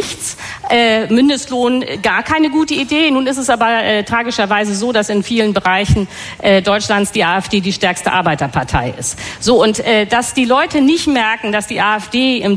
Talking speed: 180 wpm